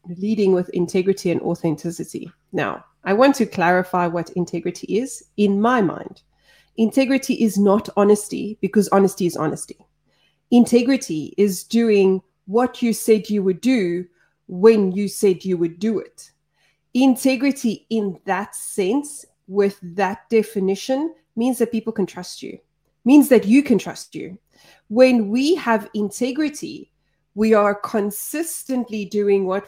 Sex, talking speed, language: female, 140 wpm, English